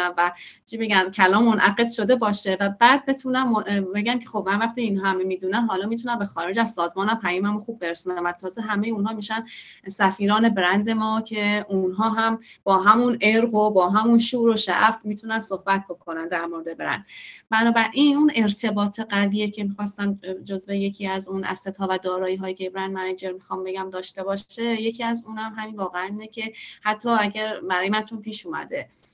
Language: Persian